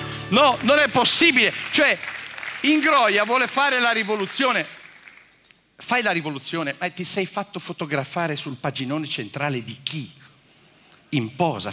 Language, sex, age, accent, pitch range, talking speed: Italian, male, 50-69, native, 130-180 Hz, 130 wpm